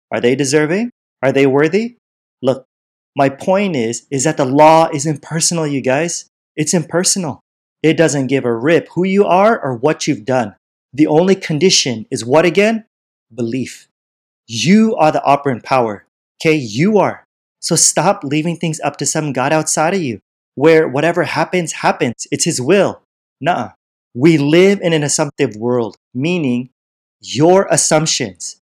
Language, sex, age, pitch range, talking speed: English, male, 30-49, 125-165 Hz, 155 wpm